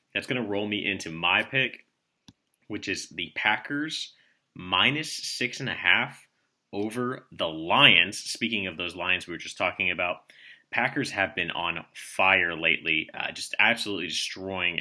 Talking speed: 145 wpm